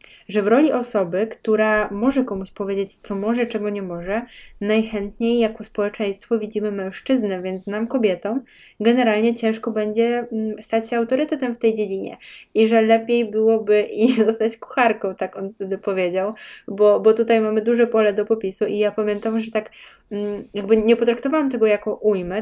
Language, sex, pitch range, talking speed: Polish, female, 205-230 Hz, 160 wpm